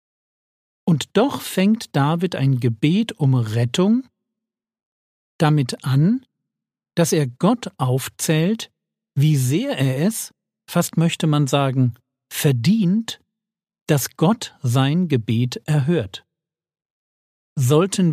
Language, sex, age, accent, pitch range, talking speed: German, male, 50-69, German, 120-190 Hz, 95 wpm